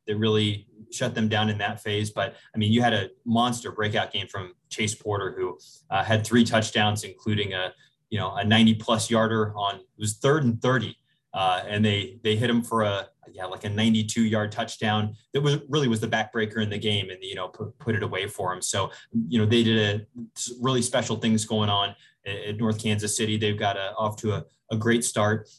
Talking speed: 225 wpm